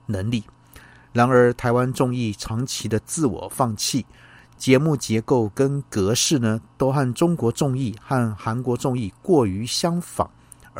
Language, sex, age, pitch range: Chinese, male, 50-69, 110-140 Hz